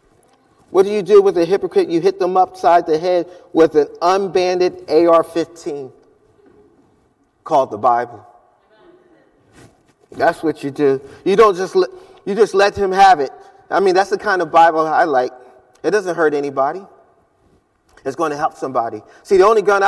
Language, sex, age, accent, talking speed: English, male, 30-49, American, 165 wpm